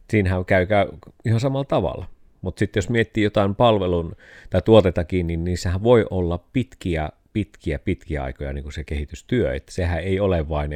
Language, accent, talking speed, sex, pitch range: Finnish, native, 160 wpm, male, 80-100 Hz